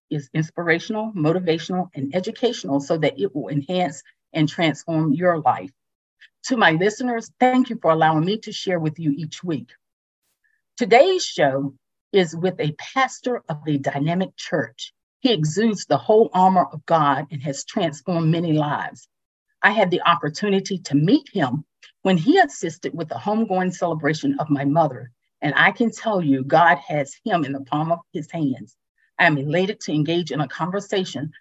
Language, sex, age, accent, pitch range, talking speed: English, female, 50-69, American, 150-205 Hz, 170 wpm